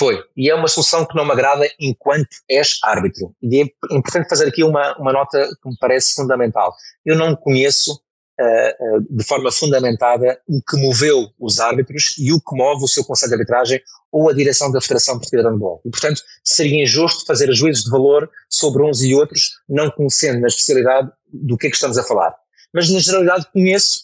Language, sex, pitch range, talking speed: Portuguese, male, 125-150 Hz, 200 wpm